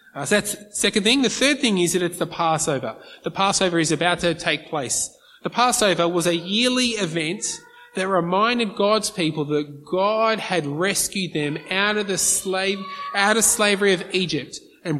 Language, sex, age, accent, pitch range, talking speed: English, male, 20-39, Australian, 160-210 Hz, 175 wpm